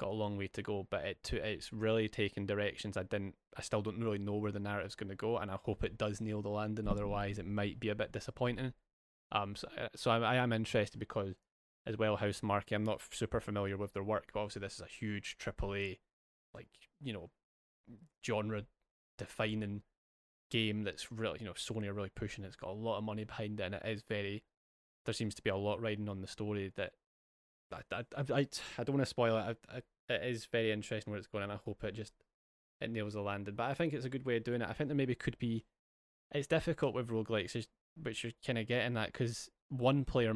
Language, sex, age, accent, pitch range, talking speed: English, male, 10-29, British, 100-115 Hz, 240 wpm